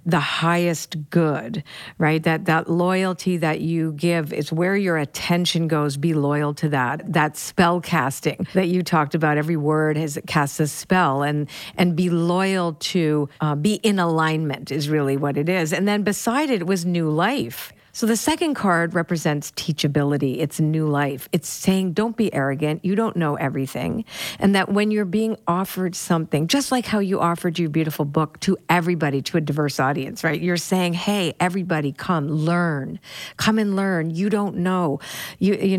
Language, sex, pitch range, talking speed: English, female, 155-195 Hz, 180 wpm